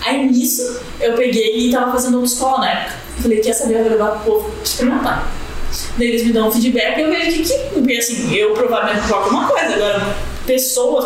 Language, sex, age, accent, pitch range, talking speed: Portuguese, female, 10-29, Brazilian, 220-265 Hz, 235 wpm